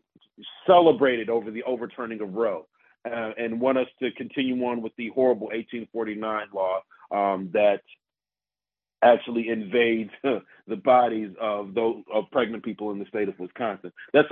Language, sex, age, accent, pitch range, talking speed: English, male, 40-59, American, 115-140 Hz, 155 wpm